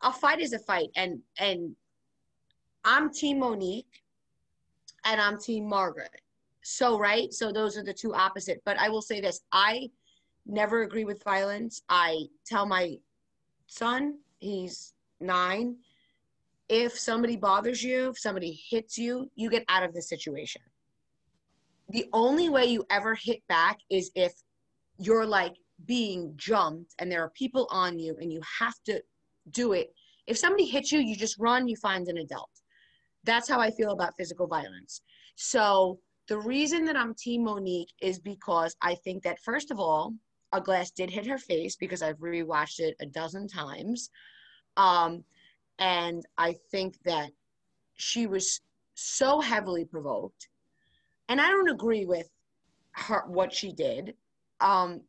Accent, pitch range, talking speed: American, 180-240 Hz, 155 wpm